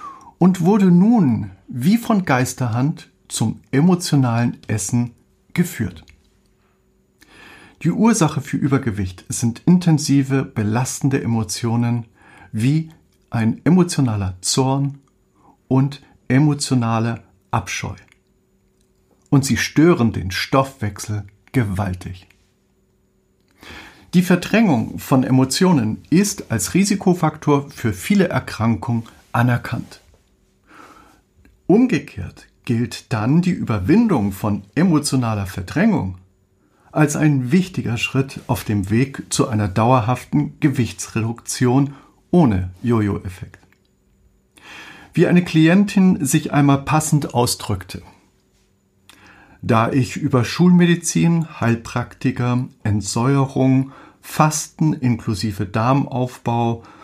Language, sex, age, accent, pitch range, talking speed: German, male, 50-69, German, 110-150 Hz, 85 wpm